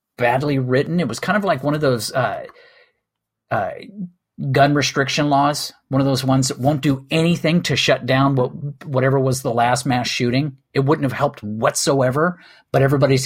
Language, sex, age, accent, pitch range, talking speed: English, male, 40-59, American, 120-150 Hz, 175 wpm